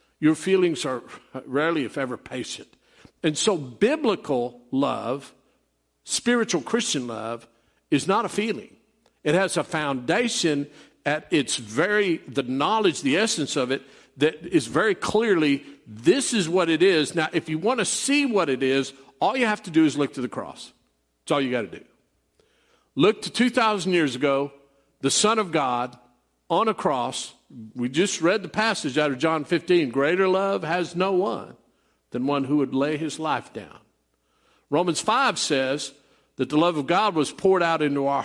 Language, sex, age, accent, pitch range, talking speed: English, male, 50-69, American, 130-195 Hz, 175 wpm